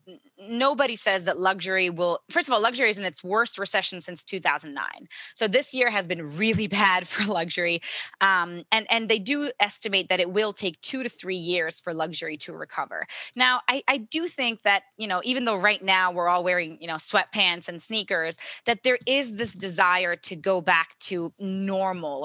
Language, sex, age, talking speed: English, female, 20-39, 195 wpm